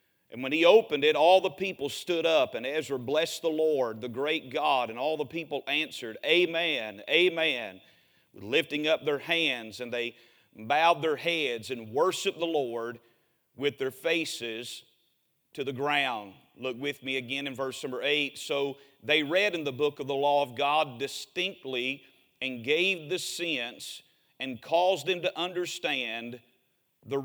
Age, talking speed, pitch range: 40-59, 165 wpm, 135-165 Hz